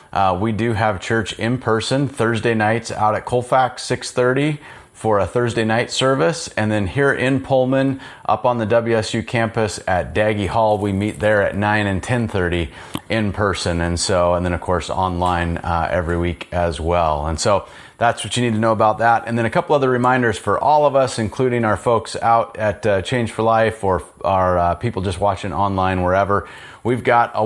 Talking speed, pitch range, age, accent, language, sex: 200 wpm, 100-125 Hz, 30-49, American, English, male